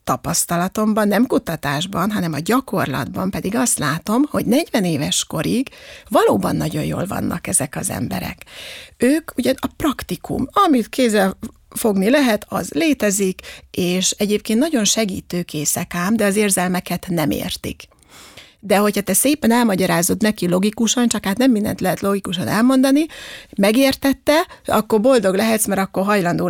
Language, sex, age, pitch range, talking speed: Hungarian, female, 30-49, 175-225 Hz, 140 wpm